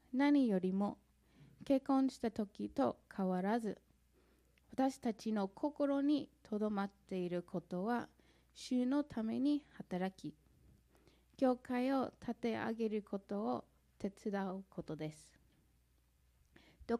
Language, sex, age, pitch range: Japanese, female, 20-39, 185-265 Hz